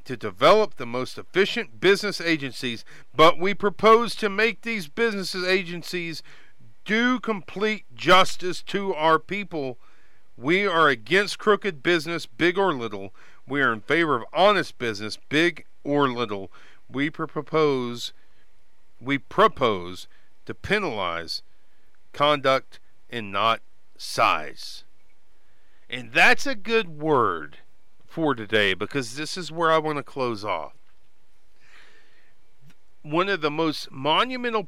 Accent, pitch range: American, 125-185 Hz